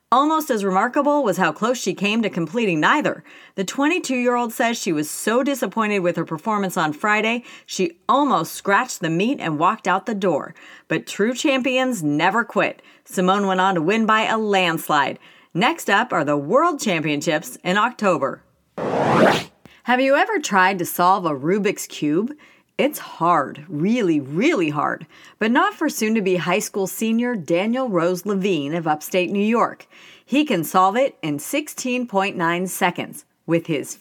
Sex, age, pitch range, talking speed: female, 40-59, 170-240 Hz, 160 wpm